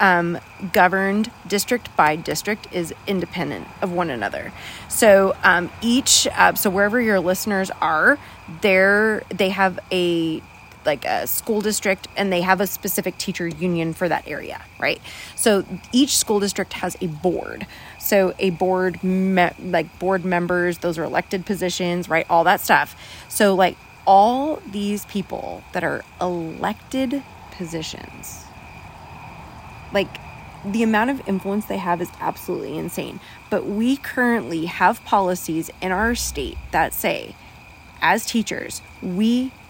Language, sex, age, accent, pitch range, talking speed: English, female, 20-39, American, 180-210 Hz, 140 wpm